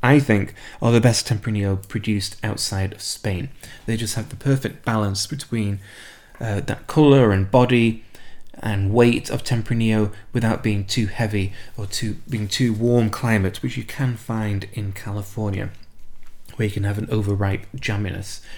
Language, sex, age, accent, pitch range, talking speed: English, male, 20-39, British, 100-125 Hz, 160 wpm